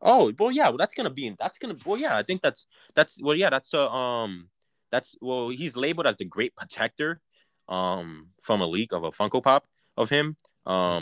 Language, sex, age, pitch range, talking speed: English, male, 20-39, 95-120 Hz, 225 wpm